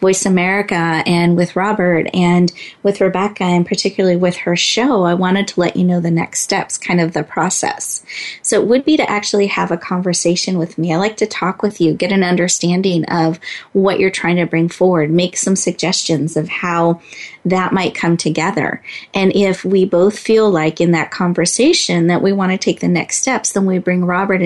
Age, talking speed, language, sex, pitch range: 30-49, 205 wpm, English, female, 170-195 Hz